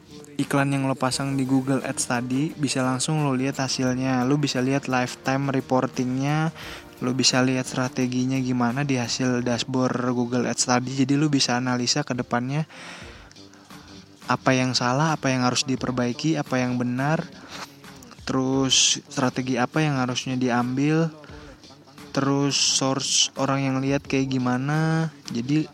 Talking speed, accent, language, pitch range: 135 wpm, native, Indonesian, 125-145 Hz